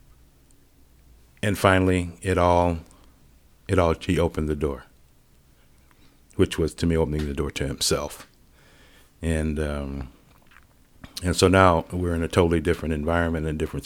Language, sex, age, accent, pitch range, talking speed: English, male, 60-79, American, 80-95 Hz, 140 wpm